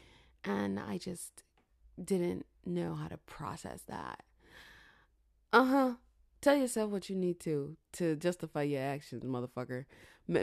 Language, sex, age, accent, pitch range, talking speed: English, female, 20-39, American, 155-240 Hz, 125 wpm